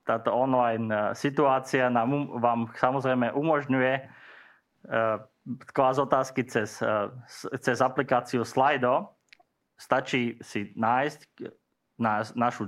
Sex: male